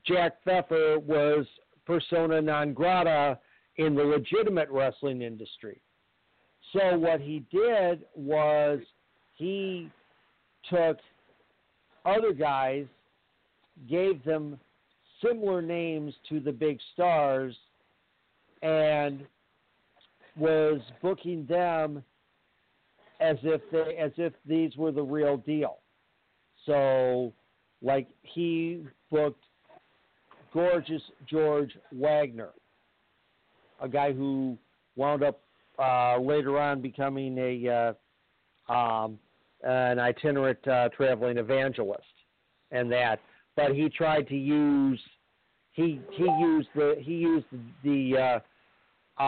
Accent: American